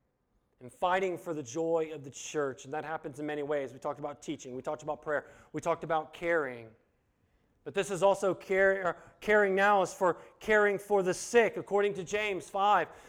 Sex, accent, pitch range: male, American, 170-215 Hz